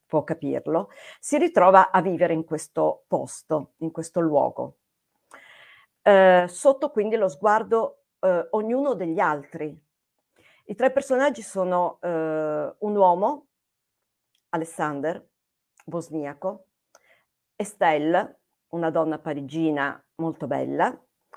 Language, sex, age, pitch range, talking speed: Italian, female, 50-69, 155-200 Hz, 100 wpm